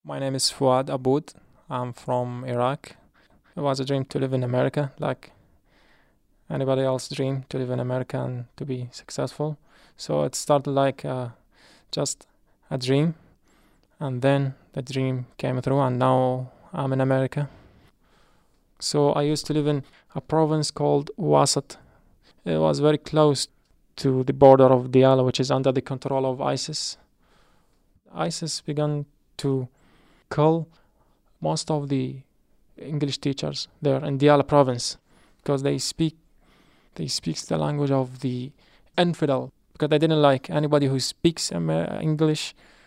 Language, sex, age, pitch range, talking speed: English, male, 20-39, 130-150 Hz, 145 wpm